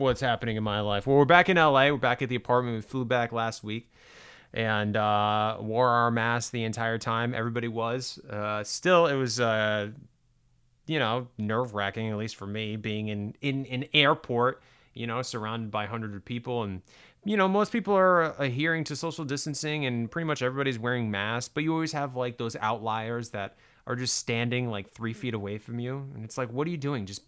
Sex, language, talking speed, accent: male, English, 210 wpm, American